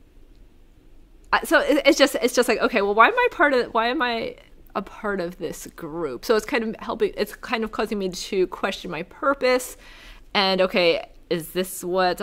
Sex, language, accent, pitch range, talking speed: female, English, American, 185-230 Hz, 195 wpm